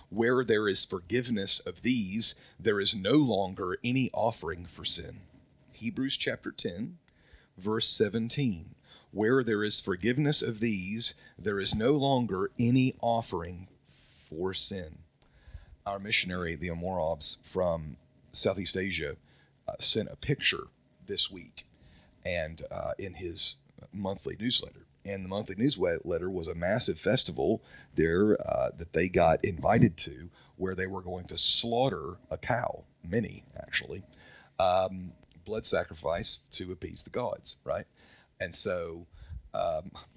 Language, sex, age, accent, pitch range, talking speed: English, male, 40-59, American, 90-120 Hz, 130 wpm